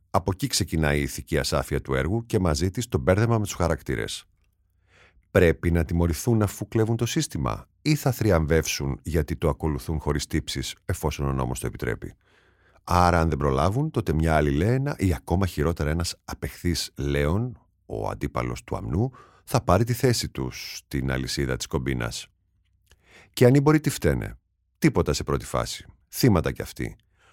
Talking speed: 165 wpm